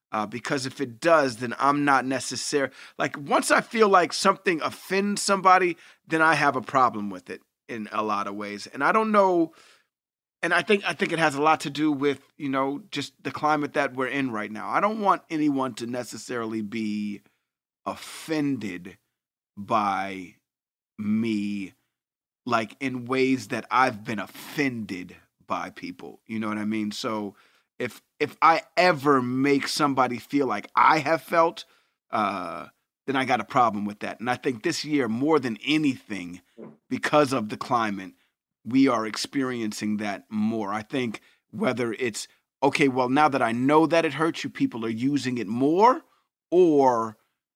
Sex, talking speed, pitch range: male, 170 wpm, 110-155 Hz